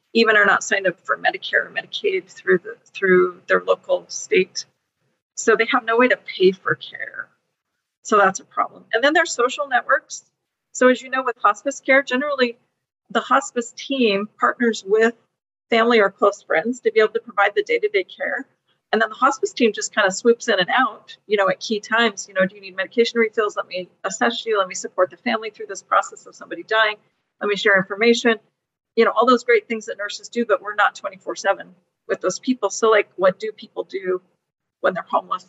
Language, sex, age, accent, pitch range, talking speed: English, female, 40-59, American, 200-255 Hz, 215 wpm